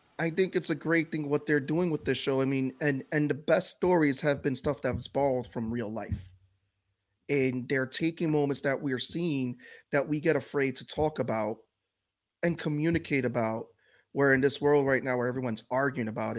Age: 30-49